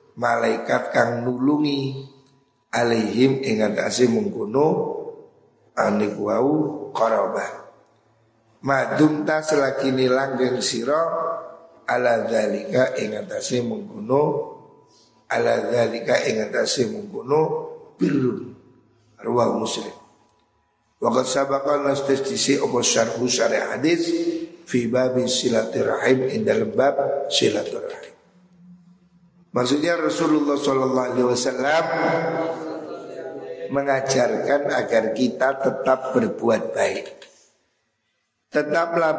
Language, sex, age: Indonesian, male, 50-69